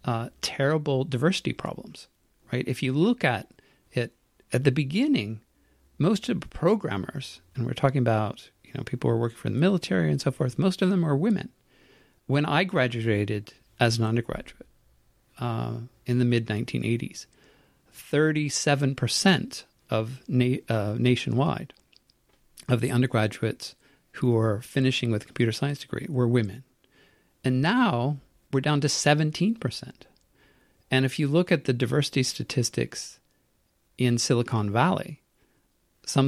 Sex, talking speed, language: male, 135 wpm, English